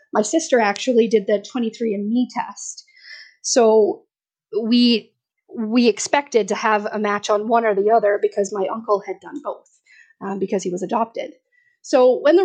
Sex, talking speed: female, 165 wpm